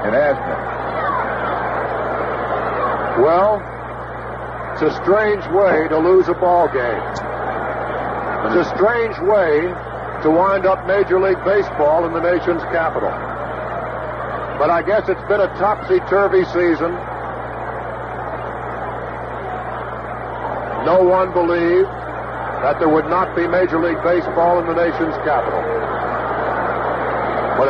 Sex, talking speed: male, 105 wpm